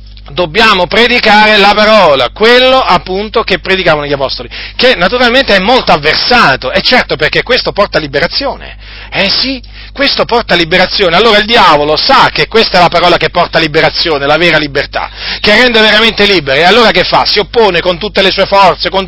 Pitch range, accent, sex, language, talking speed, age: 150-200 Hz, native, male, Italian, 180 wpm, 40-59